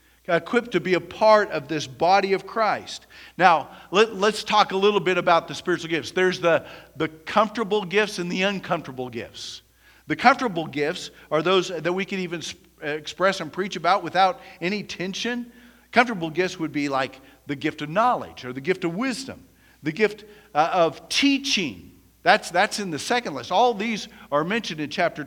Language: English